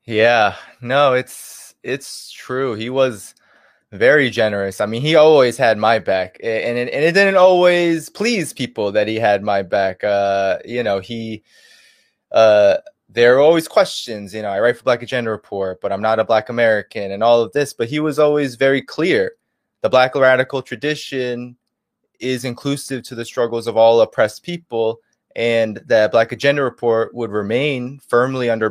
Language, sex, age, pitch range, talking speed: English, male, 20-39, 110-140 Hz, 175 wpm